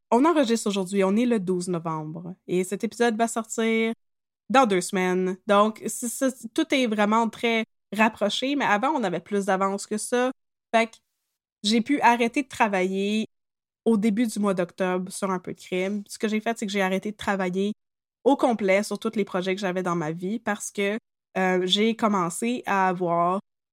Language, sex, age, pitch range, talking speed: French, female, 20-39, 185-235 Hz, 190 wpm